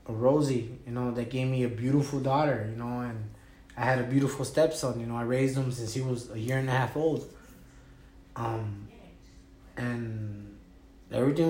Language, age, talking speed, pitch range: English, 20-39, 175 wpm, 115-135 Hz